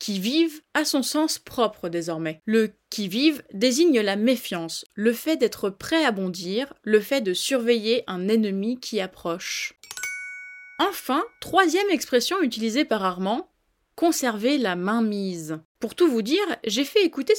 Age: 20-39